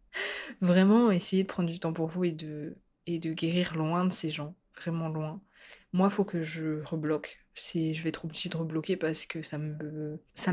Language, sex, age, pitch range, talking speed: French, female, 20-39, 170-215 Hz, 210 wpm